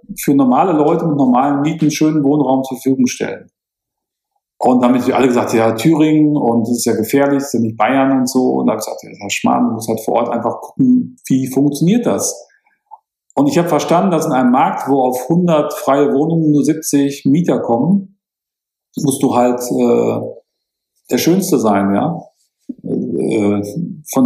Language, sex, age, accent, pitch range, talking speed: German, male, 40-59, German, 125-160 Hz, 180 wpm